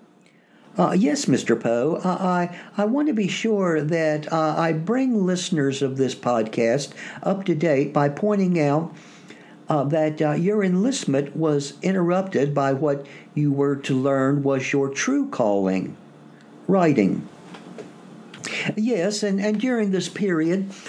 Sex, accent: male, American